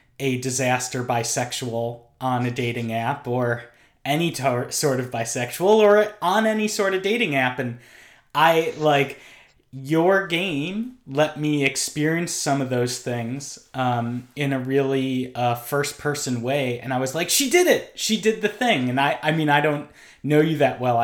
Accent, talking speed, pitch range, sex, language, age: American, 170 wpm, 120-145 Hz, male, English, 30-49